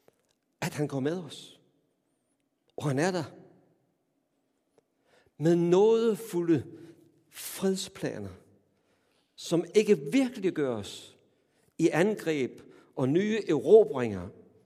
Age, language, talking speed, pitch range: 60-79, Danish, 90 wpm, 130-180 Hz